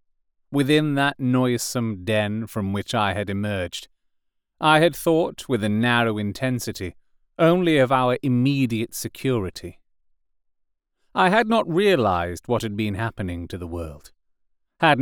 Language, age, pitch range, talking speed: English, 30-49, 90-125 Hz, 130 wpm